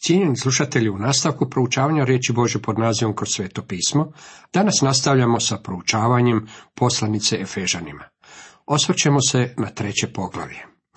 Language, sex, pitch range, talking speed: Croatian, male, 110-150 Hz, 125 wpm